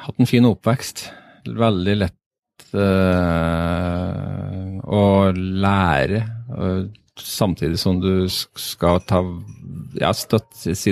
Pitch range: 90-115 Hz